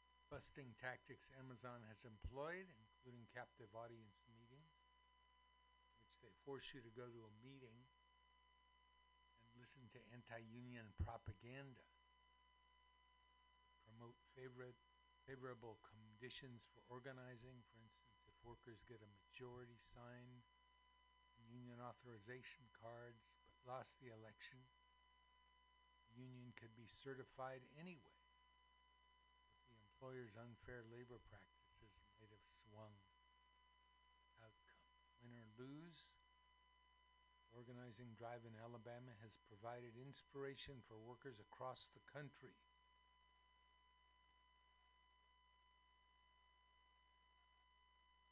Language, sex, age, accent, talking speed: English, male, 60-79, American, 90 wpm